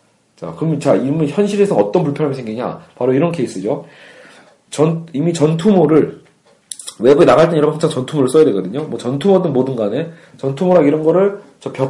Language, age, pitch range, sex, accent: Korean, 40-59, 140-195 Hz, male, native